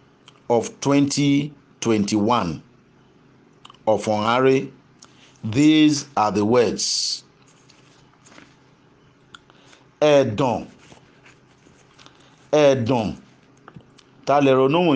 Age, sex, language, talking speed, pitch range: 50-69, male, English, 50 wpm, 135-150 Hz